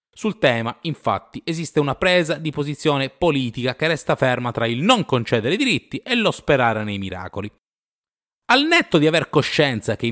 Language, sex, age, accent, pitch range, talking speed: Italian, male, 30-49, native, 105-155 Hz, 170 wpm